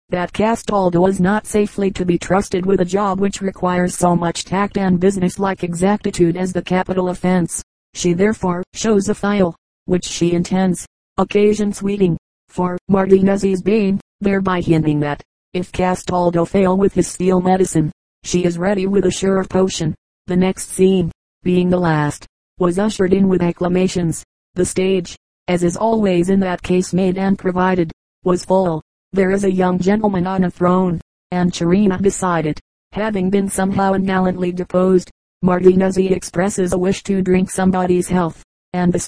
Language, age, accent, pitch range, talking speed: English, 30-49, American, 180-195 Hz, 160 wpm